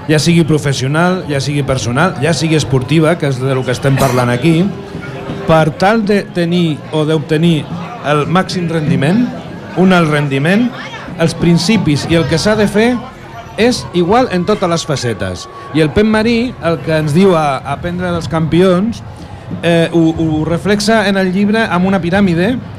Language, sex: Portuguese, male